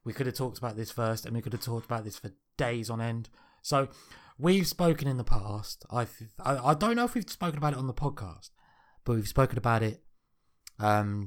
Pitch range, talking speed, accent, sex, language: 110-130 Hz, 225 wpm, British, male, English